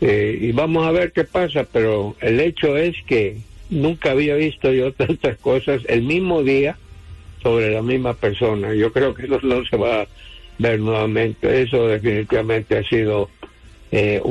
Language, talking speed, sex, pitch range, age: English, 170 wpm, male, 110-140 Hz, 60-79